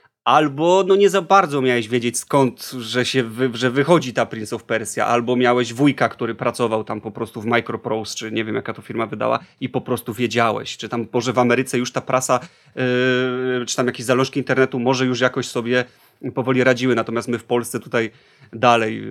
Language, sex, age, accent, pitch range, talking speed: Polish, male, 30-49, native, 120-140 Hz, 200 wpm